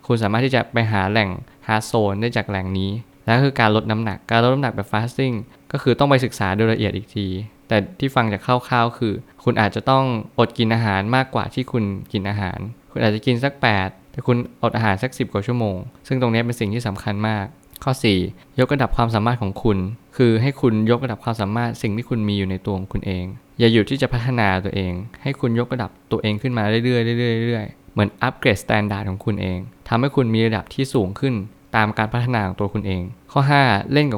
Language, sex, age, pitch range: Thai, male, 20-39, 105-125 Hz